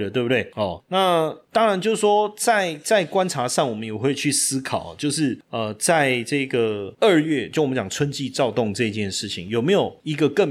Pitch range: 110-150 Hz